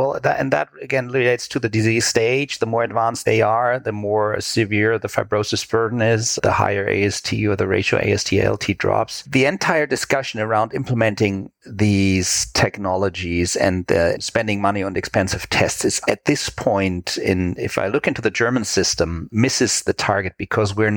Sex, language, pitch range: male, English, 100-120 Hz